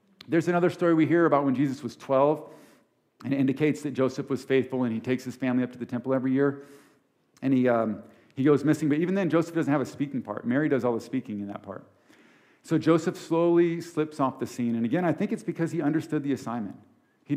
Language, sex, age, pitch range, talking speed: English, male, 50-69, 120-160 Hz, 240 wpm